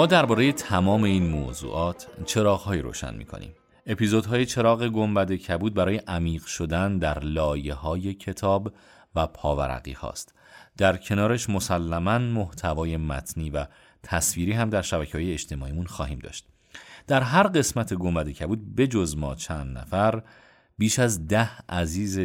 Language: Persian